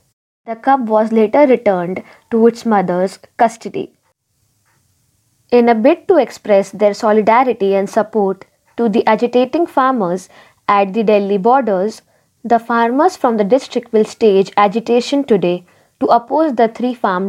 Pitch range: 195-240 Hz